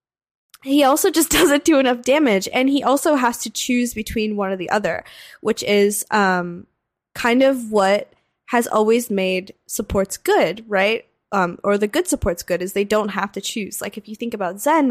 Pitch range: 195-235 Hz